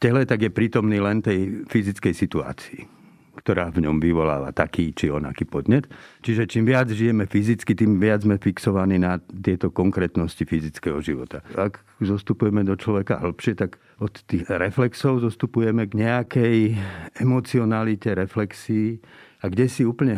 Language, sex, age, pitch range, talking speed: Slovak, male, 50-69, 90-115 Hz, 145 wpm